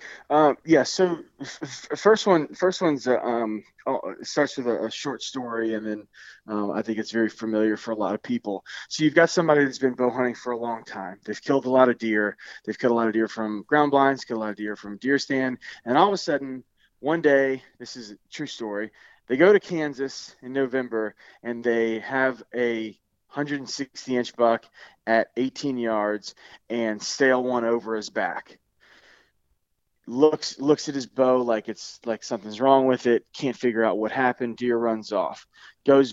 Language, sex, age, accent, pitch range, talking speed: English, male, 20-39, American, 110-135 Hz, 205 wpm